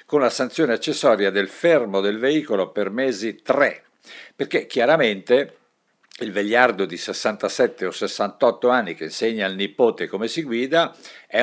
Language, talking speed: Italian, 145 wpm